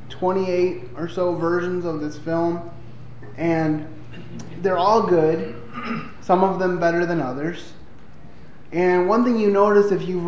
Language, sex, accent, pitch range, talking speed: English, male, American, 145-185 Hz, 140 wpm